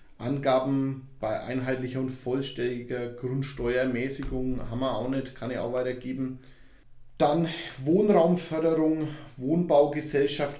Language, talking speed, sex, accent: German, 95 wpm, male, German